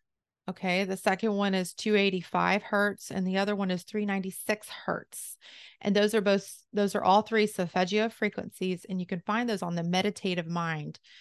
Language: English